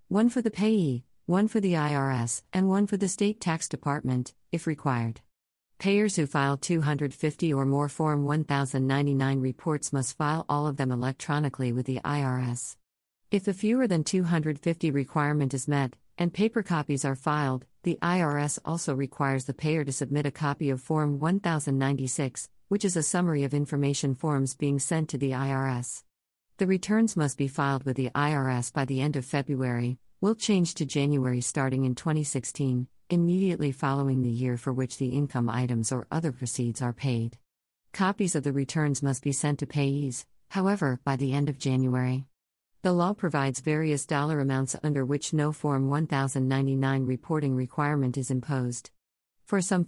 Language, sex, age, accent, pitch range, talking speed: English, female, 50-69, American, 130-155 Hz, 165 wpm